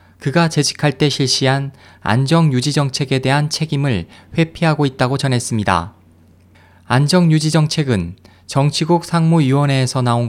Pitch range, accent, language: 105-155 Hz, native, Korean